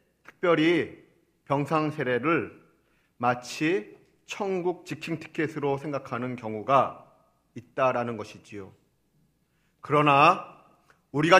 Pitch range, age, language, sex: 130-175 Hz, 40-59, Korean, male